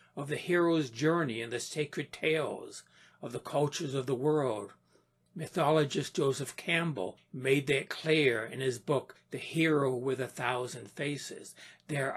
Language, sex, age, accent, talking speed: English, male, 60-79, American, 150 wpm